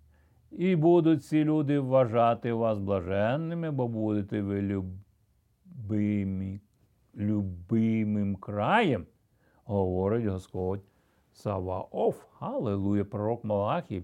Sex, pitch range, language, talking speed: male, 100-130 Hz, Ukrainian, 80 wpm